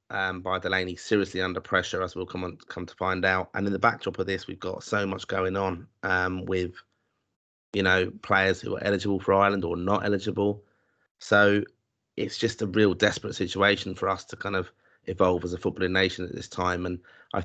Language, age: English, 30-49